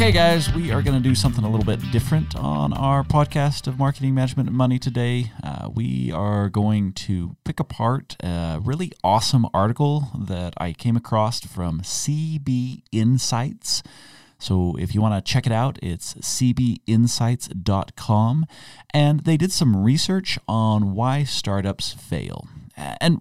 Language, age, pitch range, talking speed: English, 30-49, 95-130 Hz, 155 wpm